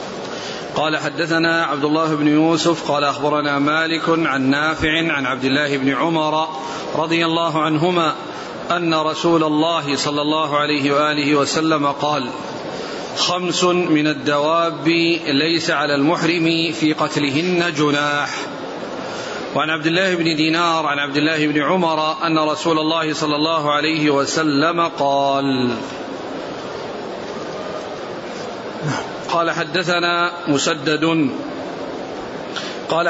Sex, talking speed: male, 105 wpm